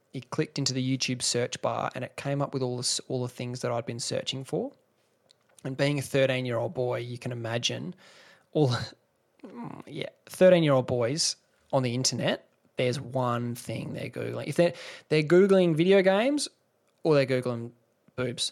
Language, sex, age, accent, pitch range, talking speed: English, male, 20-39, Australian, 125-145 Hz, 170 wpm